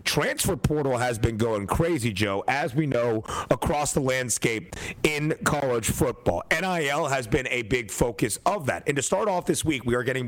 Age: 40-59